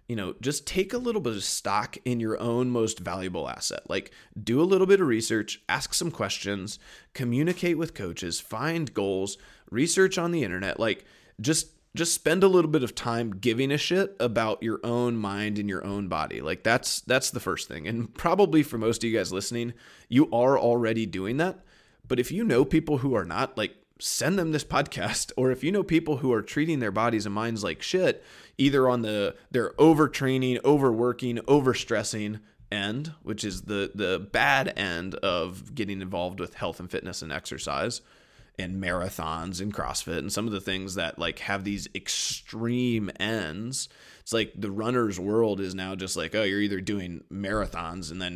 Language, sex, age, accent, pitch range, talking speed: English, male, 20-39, American, 100-135 Hz, 190 wpm